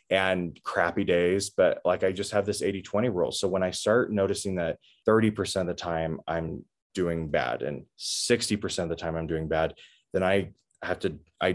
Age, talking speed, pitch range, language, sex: 20-39, 190 wpm, 85-100 Hz, English, male